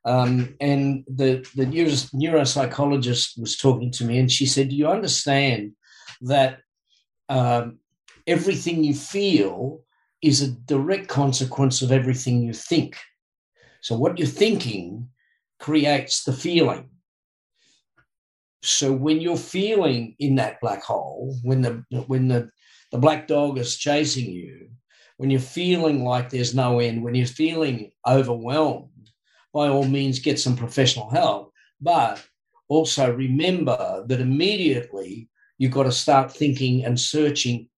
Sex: male